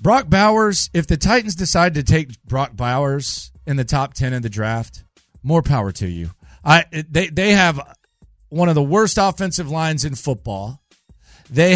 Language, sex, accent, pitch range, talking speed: English, male, American, 135-185 Hz, 175 wpm